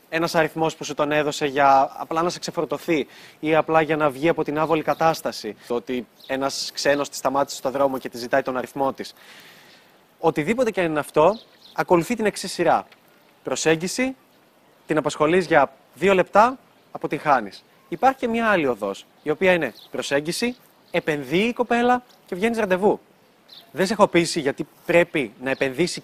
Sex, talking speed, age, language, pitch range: male, 170 wpm, 20-39, Greek, 150-200 Hz